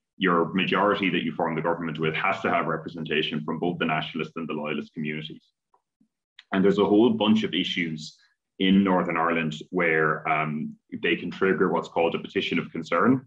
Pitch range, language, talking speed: 80-95 Hz, English, 185 wpm